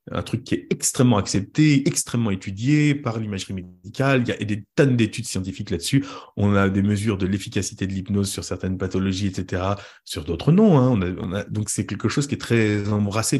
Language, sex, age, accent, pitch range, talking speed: French, male, 30-49, French, 95-115 Hz, 210 wpm